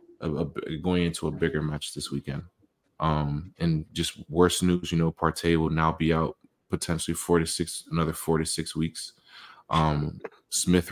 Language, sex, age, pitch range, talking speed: English, male, 20-39, 80-95 Hz, 165 wpm